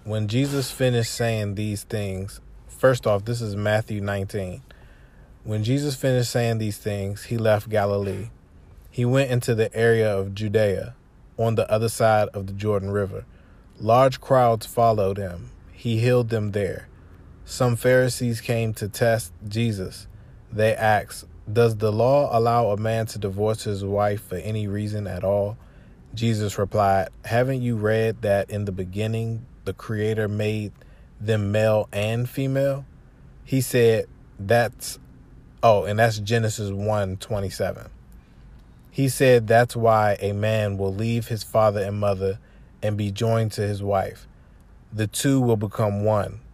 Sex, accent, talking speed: male, American, 150 wpm